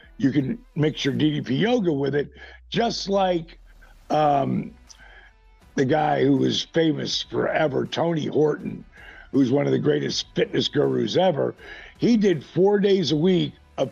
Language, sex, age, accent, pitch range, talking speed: English, male, 60-79, American, 140-175 Hz, 145 wpm